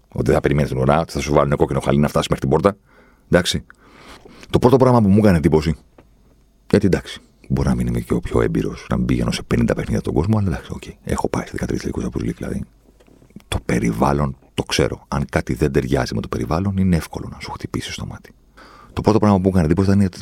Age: 40-59